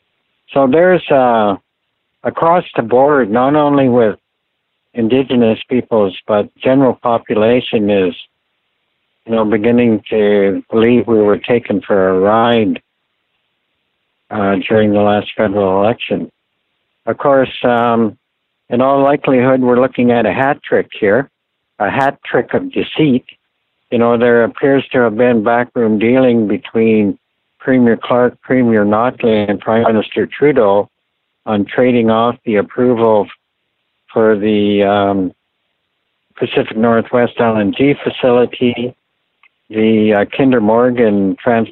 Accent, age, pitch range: American, 60-79, 105-125 Hz